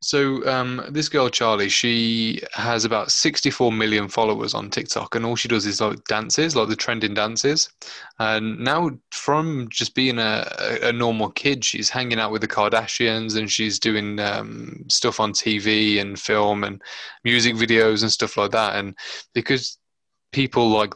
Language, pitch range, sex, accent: English, 110-125 Hz, male, British